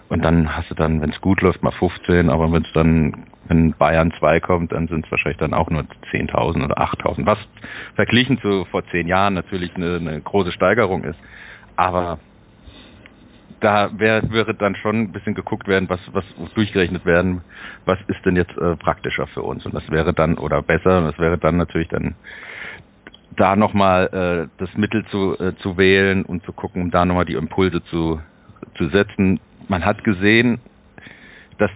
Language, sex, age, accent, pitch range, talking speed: German, male, 40-59, German, 85-100 Hz, 190 wpm